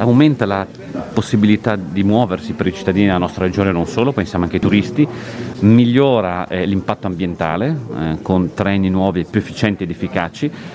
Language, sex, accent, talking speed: Italian, male, native, 150 wpm